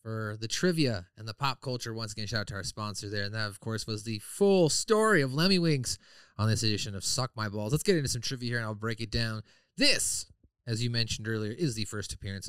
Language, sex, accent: English, male, American